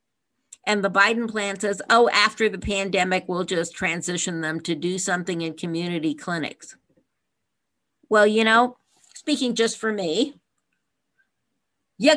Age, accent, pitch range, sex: 50-69, American, 175-225 Hz, female